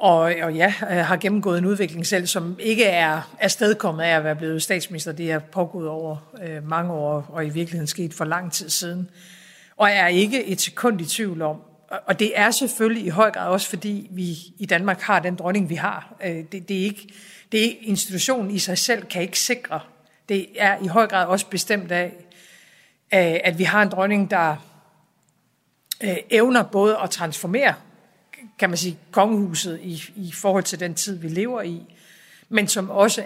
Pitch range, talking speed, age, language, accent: 170-205 Hz, 180 wpm, 50-69, Danish, native